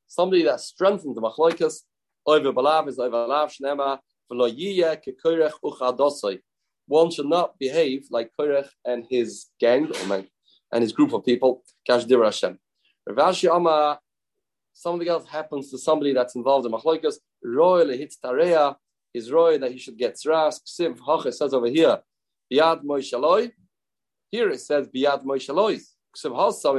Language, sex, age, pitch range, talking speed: English, male, 30-49, 135-180 Hz, 150 wpm